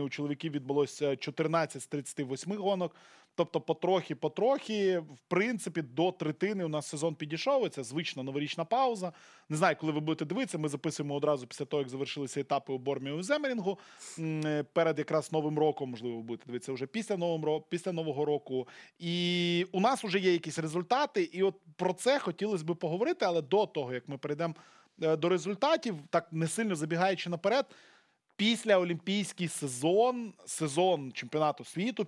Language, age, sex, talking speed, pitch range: Russian, 20-39, male, 155 wpm, 145-185 Hz